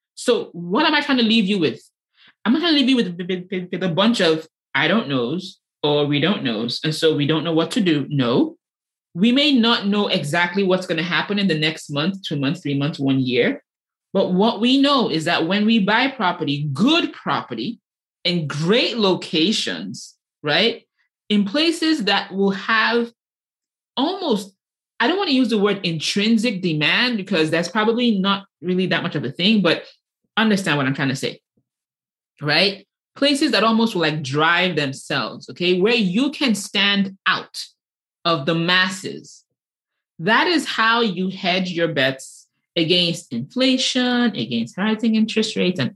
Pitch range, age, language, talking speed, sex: 170-240 Hz, 20-39, English, 170 wpm, male